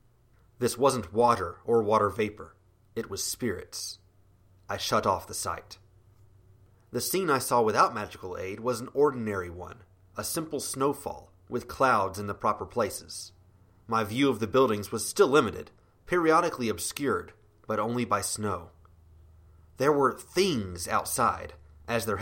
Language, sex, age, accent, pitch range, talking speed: English, male, 30-49, American, 95-120 Hz, 145 wpm